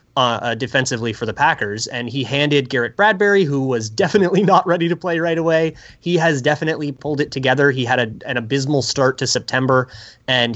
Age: 20-39